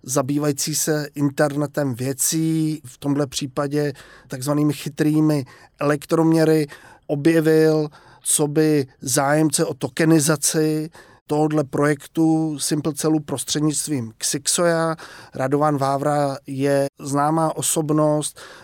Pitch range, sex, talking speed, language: 140-155 Hz, male, 85 wpm, Czech